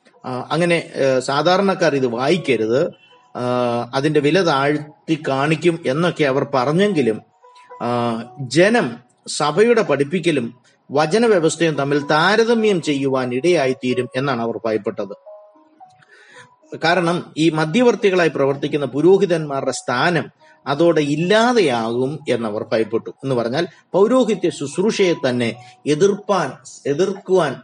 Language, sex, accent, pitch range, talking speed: Malayalam, male, native, 130-175 Hz, 85 wpm